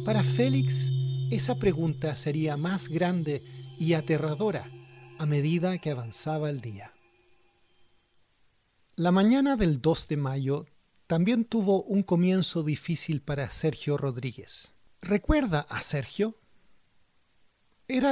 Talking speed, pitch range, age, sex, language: 110 wpm, 130-185 Hz, 50-69, male, English